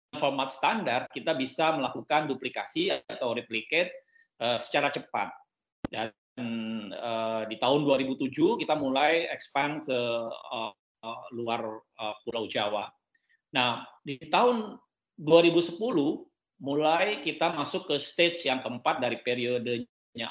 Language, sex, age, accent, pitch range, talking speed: Indonesian, male, 50-69, native, 120-165 Hz, 115 wpm